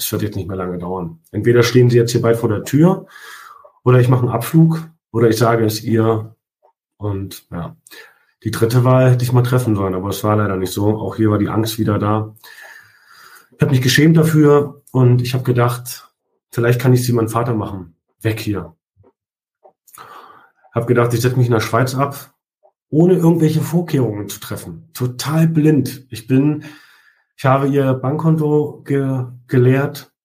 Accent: German